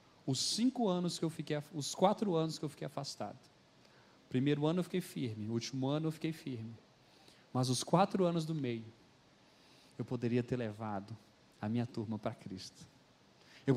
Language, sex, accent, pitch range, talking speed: Portuguese, male, Brazilian, 130-190 Hz, 175 wpm